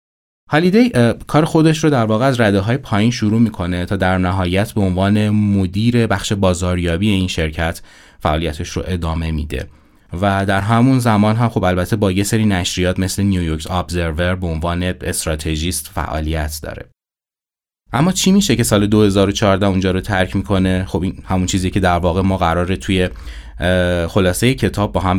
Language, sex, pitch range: Persian, male, 90-110 Hz